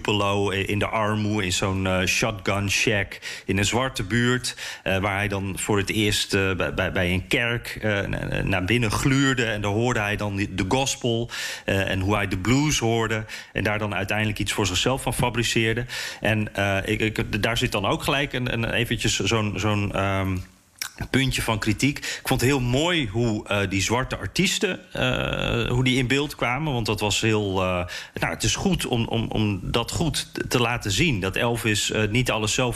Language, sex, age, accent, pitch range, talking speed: Dutch, male, 40-59, Dutch, 105-125 Hz, 200 wpm